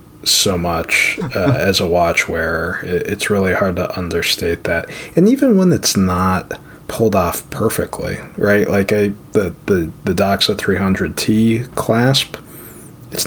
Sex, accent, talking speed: male, American, 140 wpm